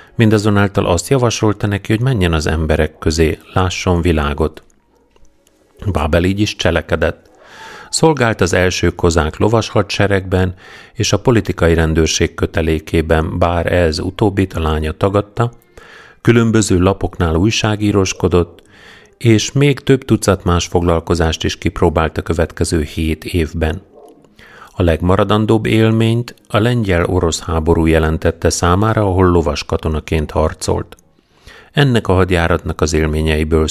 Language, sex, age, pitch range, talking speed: Hungarian, male, 40-59, 80-100 Hz, 115 wpm